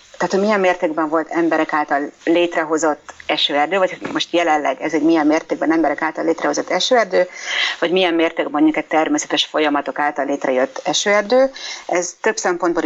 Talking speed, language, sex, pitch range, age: 150 wpm, Hungarian, female, 155-190 Hz, 30-49